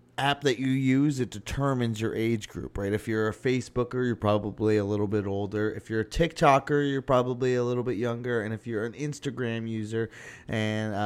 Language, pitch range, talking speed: English, 110-140 Hz, 200 wpm